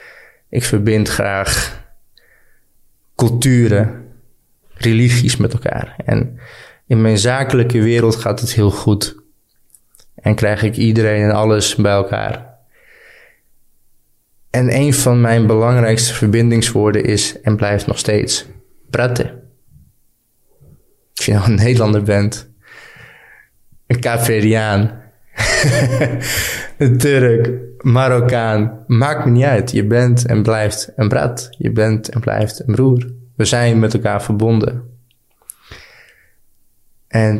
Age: 20-39